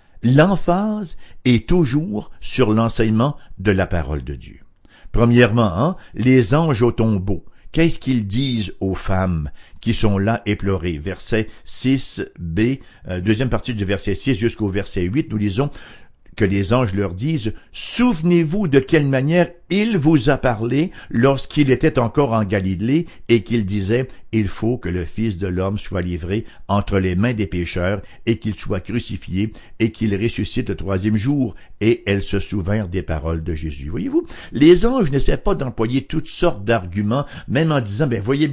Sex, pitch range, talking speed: male, 100-150 Hz, 165 wpm